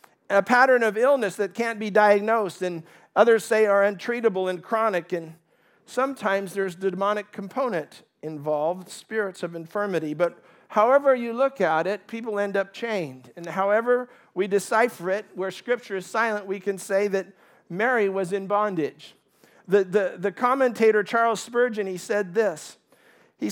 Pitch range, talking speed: 185-225 Hz, 155 wpm